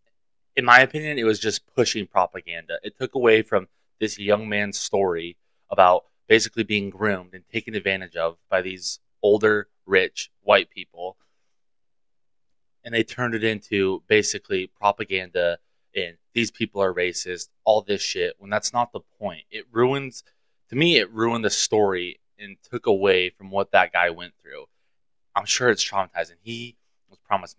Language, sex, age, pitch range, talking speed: English, male, 20-39, 90-115 Hz, 160 wpm